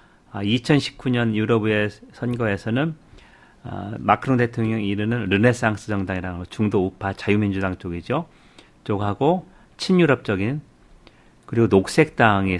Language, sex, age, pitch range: Korean, male, 40-59, 100-130 Hz